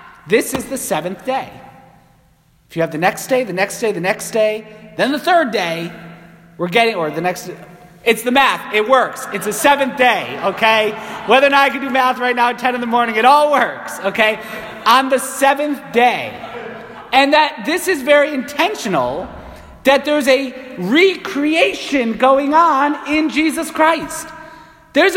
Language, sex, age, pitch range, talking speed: English, male, 30-49, 215-300 Hz, 175 wpm